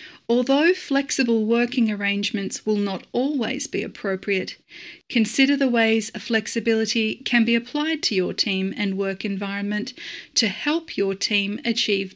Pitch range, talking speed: 210-255 Hz, 135 wpm